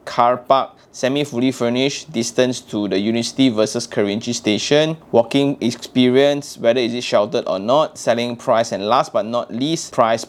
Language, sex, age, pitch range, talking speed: English, male, 20-39, 115-145 Hz, 165 wpm